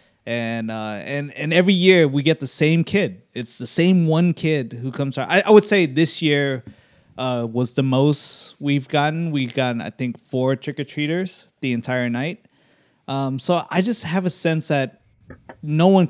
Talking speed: 190 wpm